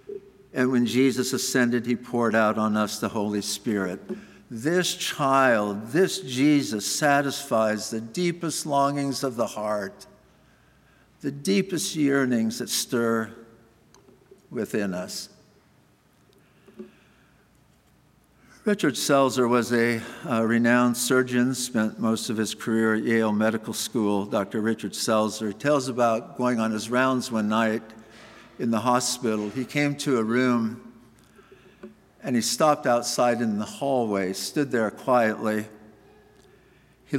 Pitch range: 110-135 Hz